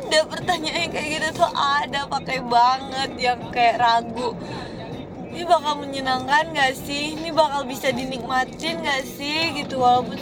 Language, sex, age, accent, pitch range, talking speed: Indonesian, female, 20-39, native, 255-330 Hz, 155 wpm